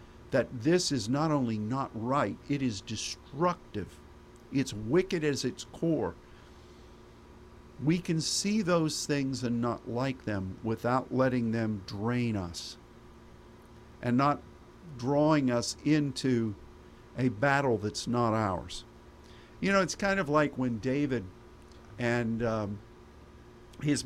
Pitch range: 110-140 Hz